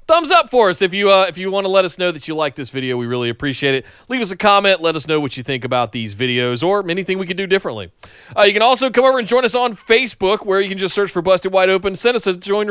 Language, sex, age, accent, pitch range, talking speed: English, male, 30-49, American, 145-205 Hz, 310 wpm